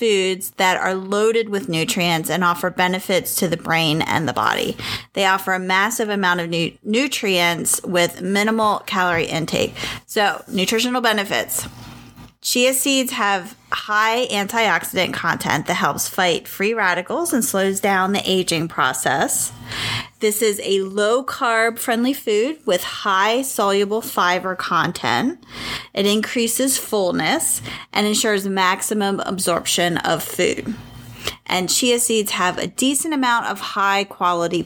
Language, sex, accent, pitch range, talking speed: English, female, American, 180-225 Hz, 130 wpm